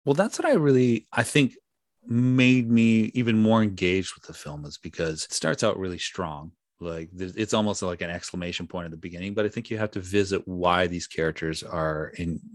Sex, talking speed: male, 210 wpm